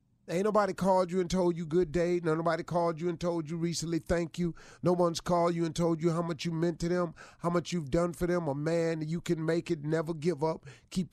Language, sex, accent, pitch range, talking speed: English, male, American, 125-170 Hz, 265 wpm